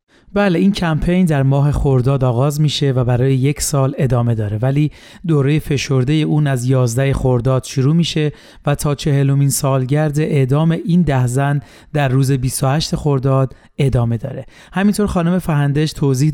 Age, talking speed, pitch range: 30-49, 150 wpm, 135-155 Hz